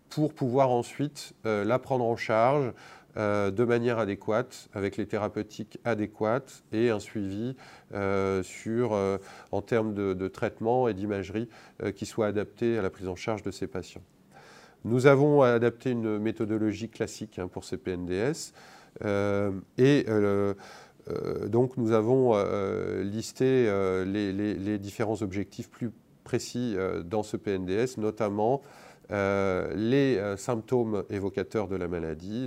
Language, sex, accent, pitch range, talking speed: French, male, French, 100-120 Hz, 145 wpm